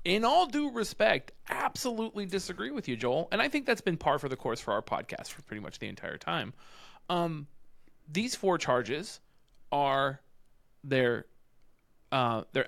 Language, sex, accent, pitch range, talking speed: English, male, American, 130-170 Hz, 165 wpm